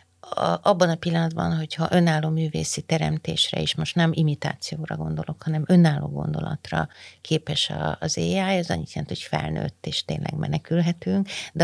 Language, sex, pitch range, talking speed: Hungarian, female, 155-190 Hz, 150 wpm